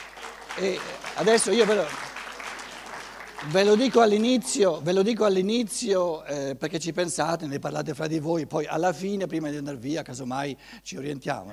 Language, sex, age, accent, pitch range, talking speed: Italian, male, 60-79, native, 145-205 Hz, 160 wpm